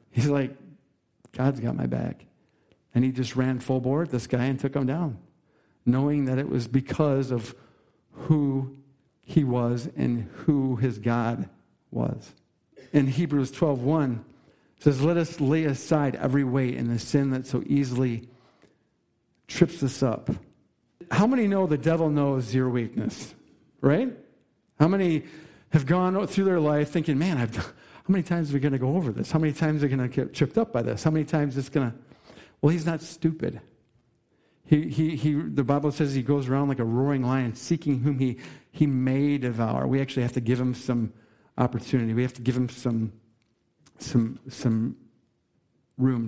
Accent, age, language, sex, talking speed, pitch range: American, 50-69, English, male, 185 wpm, 125-150 Hz